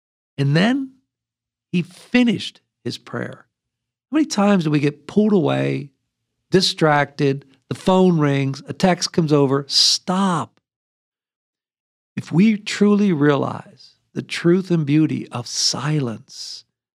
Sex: male